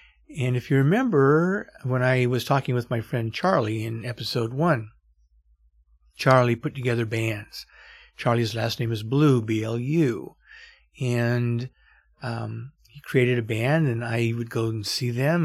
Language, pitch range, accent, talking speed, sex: English, 115-130 Hz, American, 150 wpm, male